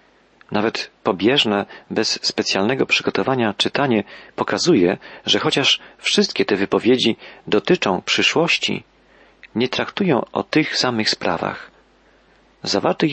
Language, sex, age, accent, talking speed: Polish, male, 40-59, native, 95 wpm